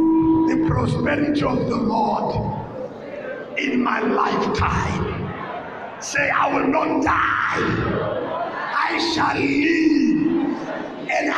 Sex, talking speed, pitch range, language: male, 85 wpm, 235-315 Hz, English